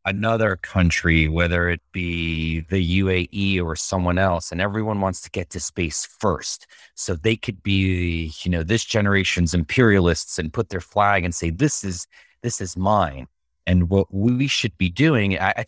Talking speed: 170 wpm